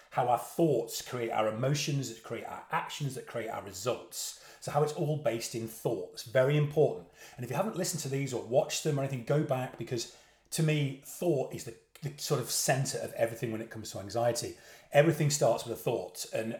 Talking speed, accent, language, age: 215 wpm, British, English, 30-49